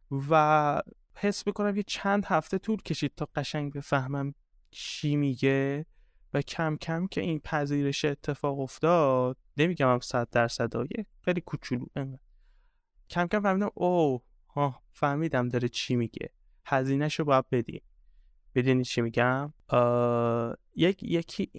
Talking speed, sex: 130 wpm, male